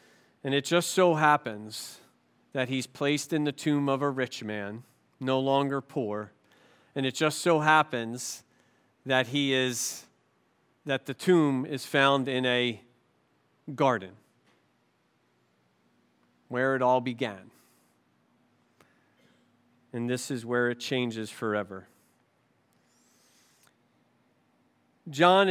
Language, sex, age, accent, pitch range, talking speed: English, male, 40-59, American, 120-155 Hz, 110 wpm